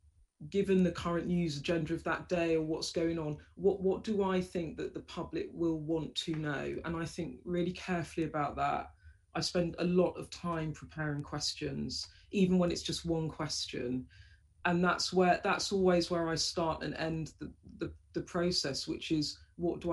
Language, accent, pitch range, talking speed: English, British, 150-175 Hz, 190 wpm